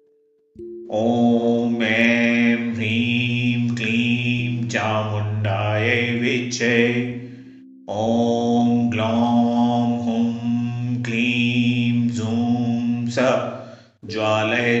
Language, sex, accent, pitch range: Hindi, male, native, 115-120 Hz